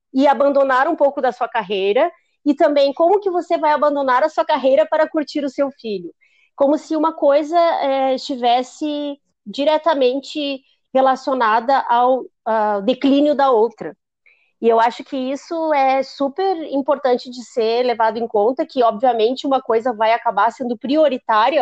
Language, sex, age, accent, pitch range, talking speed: Portuguese, female, 30-49, Brazilian, 225-290 Hz, 155 wpm